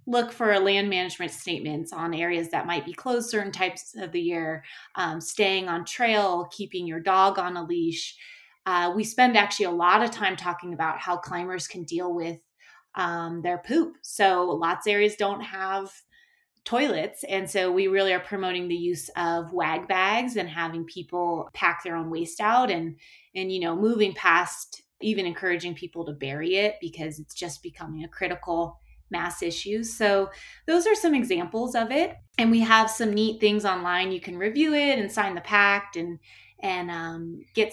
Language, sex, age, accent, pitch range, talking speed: English, female, 20-39, American, 170-210 Hz, 185 wpm